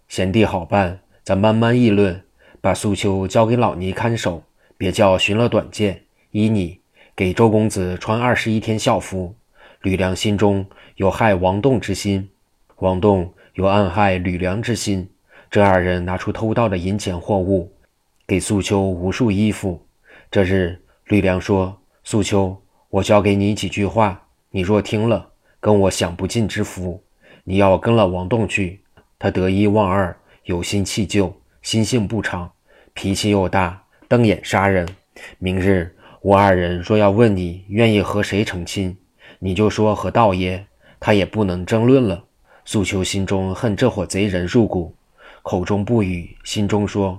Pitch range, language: 95-105 Hz, Chinese